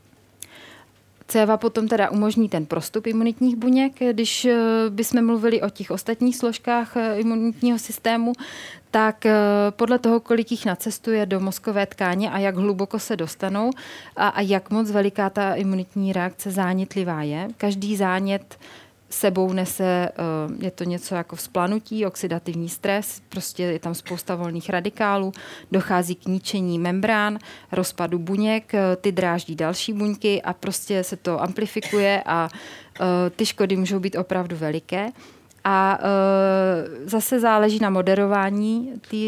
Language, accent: Czech, native